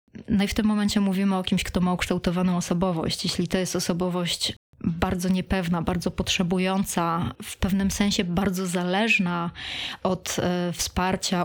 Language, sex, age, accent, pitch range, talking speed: Polish, female, 20-39, native, 180-205 Hz, 140 wpm